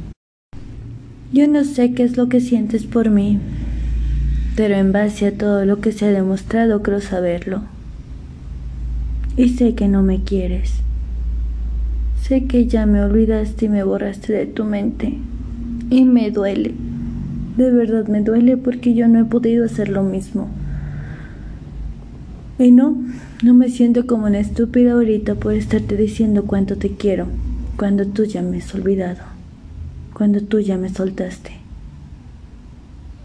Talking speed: 145 wpm